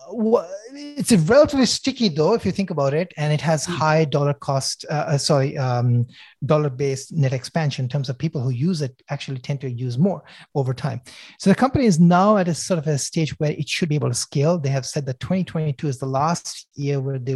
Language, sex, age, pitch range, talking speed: English, male, 30-49, 130-165 Hz, 230 wpm